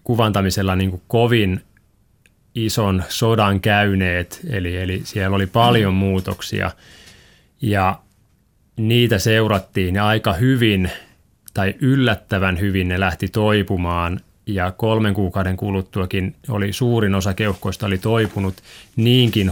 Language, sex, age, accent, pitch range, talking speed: Finnish, male, 20-39, native, 95-110 Hz, 110 wpm